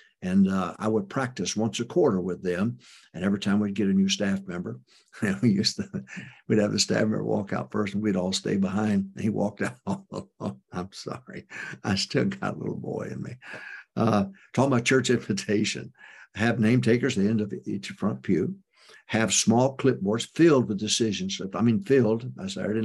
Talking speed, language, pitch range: 185 wpm, English, 100-130 Hz